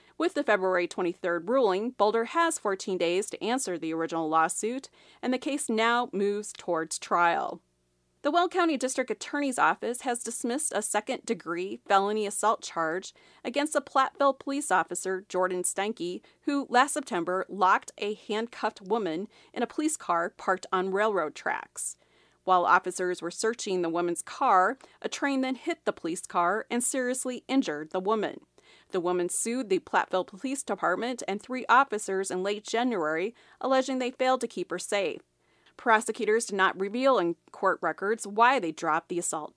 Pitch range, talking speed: 180-255 Hz, 160 wpm